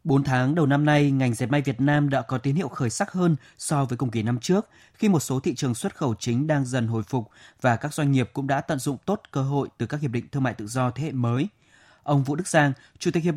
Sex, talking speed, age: male, 285 wpm, 20-39